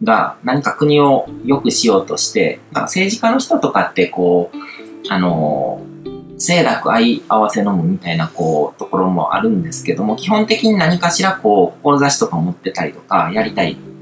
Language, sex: Japanese, male